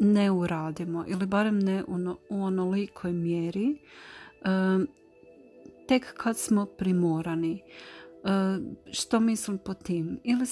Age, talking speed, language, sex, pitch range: 40-59, 95 wpm, Croatian, female, 180-215 Hz